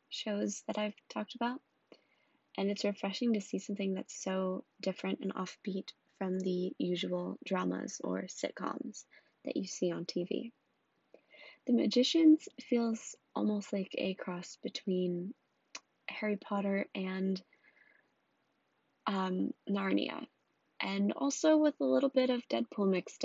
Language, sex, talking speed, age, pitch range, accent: English, female, 125 wpm, 20-39, 185-240 Hz, American